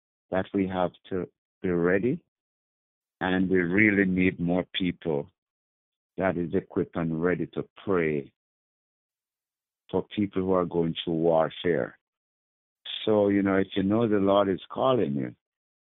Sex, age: male, 60-79